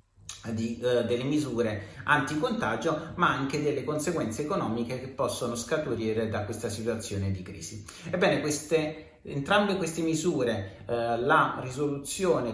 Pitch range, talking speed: 120-160 Hz, 125 wpm